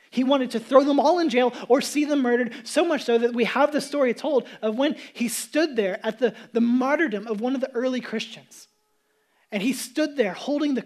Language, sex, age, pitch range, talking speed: English, male, 20-39, 210-265 Hz, 230 wpm